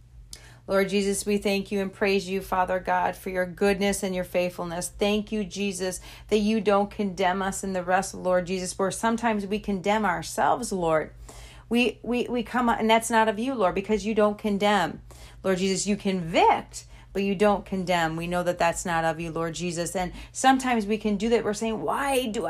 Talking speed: 205 wpm